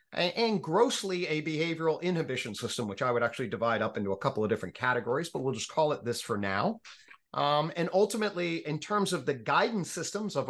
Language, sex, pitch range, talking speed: English, male, 130-185 Hz, 205 wpm